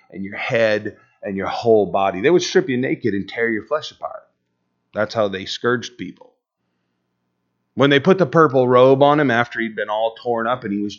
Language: English